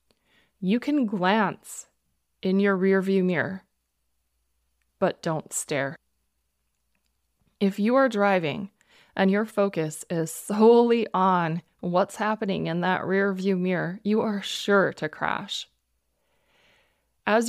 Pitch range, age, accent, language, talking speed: 165-210 Hz, 20-39, American, English, 110 wpm